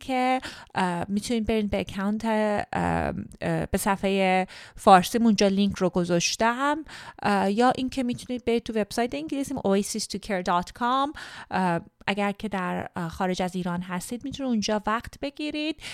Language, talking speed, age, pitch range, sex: Persian, 130 wpm, 30-49, 185-245 Hz, female